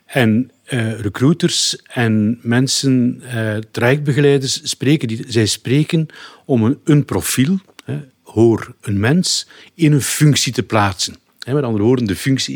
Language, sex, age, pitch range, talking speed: Dutch, male, 50-69, 110-145 Hz, 115 wpm